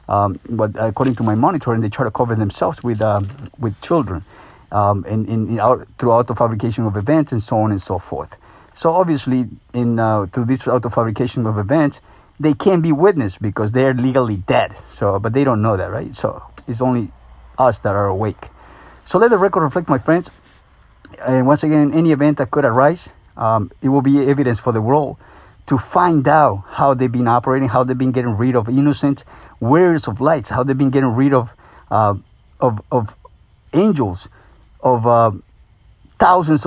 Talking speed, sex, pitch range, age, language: 190 wpm, male, 110-140 Hz, 30-49, English